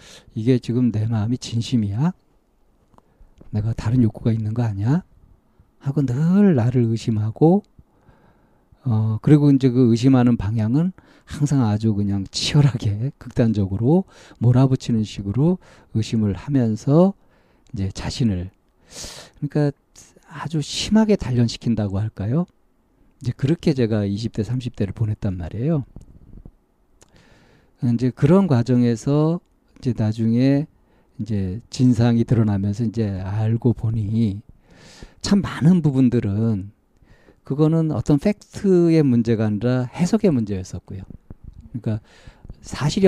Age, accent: 40-59, native